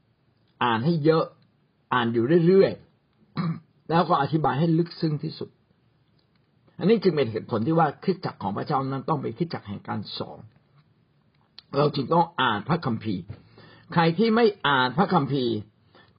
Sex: male